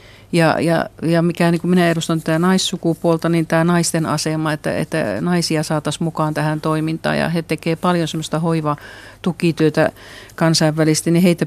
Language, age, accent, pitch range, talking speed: Finnish, 50-69, native, 150-165 Hz, 155 wpm